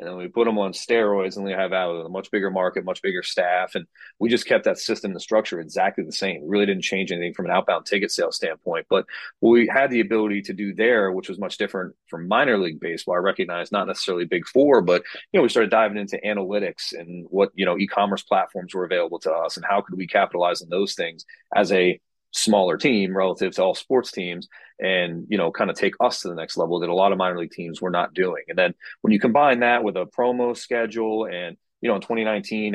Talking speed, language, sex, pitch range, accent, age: 245 wpm, English, male, 95-110 Hz, American, 30-49